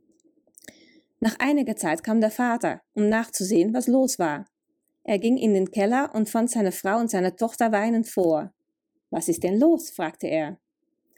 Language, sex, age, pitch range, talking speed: German, female, 30-49, 195-300 Hz, 165 wpm